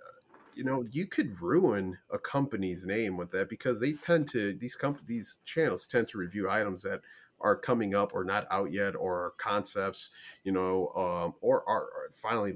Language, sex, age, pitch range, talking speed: English, male, 30-49, 95-120 Hz, 185 wpm